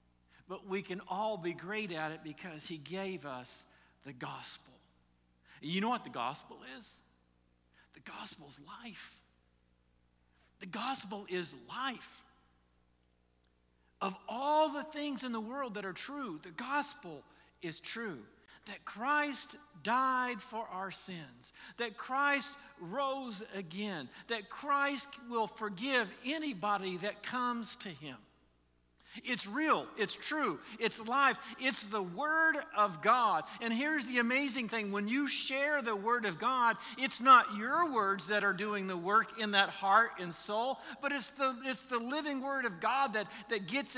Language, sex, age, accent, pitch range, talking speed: English, male, 50-69, American, 180-255 Hz, 150 wpm